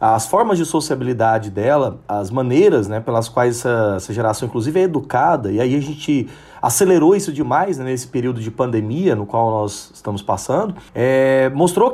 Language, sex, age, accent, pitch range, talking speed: Portuguese, male, 30-49, Brazilian, 115-165 Hz, 170 wpm